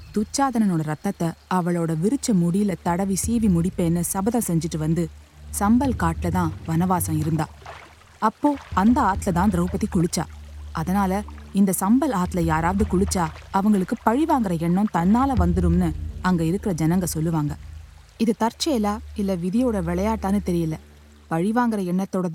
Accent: native